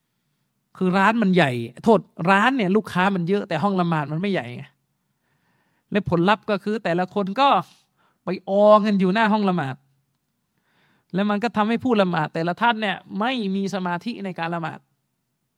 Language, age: Thai, 20-39